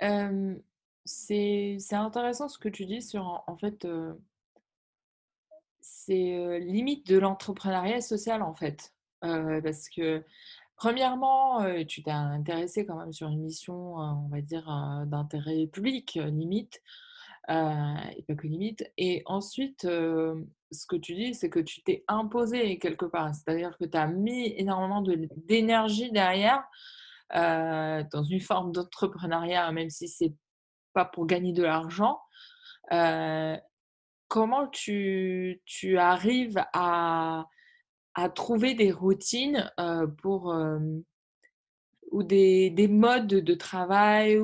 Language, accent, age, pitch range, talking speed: French, French, 20-39, 165-225 Hz, 140 wpm